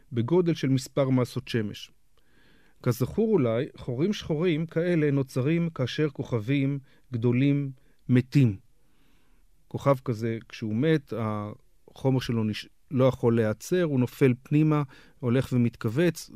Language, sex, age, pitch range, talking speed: Hebrew, male, 40-59, 120-150 Hz, 110 wpm